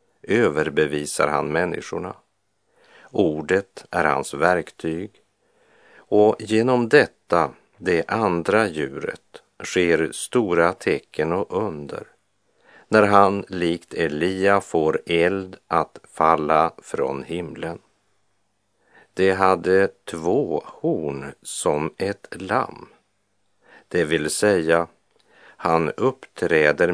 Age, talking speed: 50-69, 90 wpm